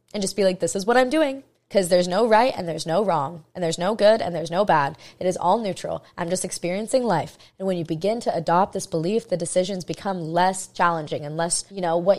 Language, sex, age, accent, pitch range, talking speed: English, female, 20-39, American, 175-220 Hz, 250 wpm